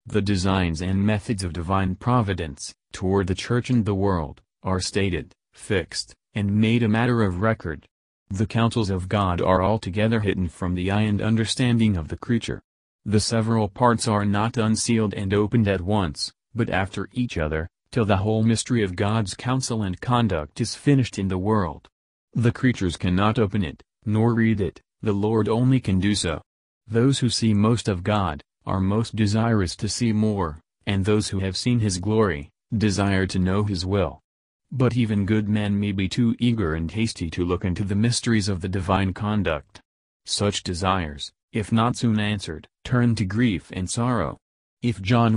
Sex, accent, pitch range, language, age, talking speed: male, American, 95-110 Hz, English, 40-59, 180 wpm